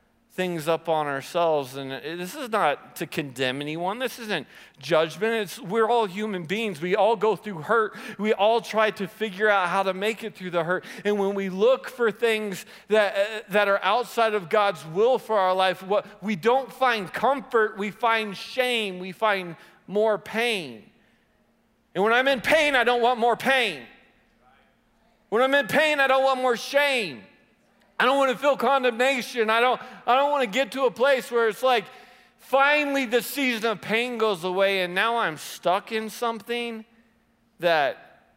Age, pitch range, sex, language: 40-59, 165-235 Hz, male, English